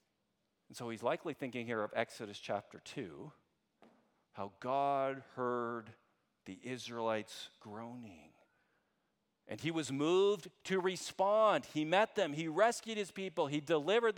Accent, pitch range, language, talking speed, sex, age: American, 110-150 Hz, English, 130 wpm, male, 40-59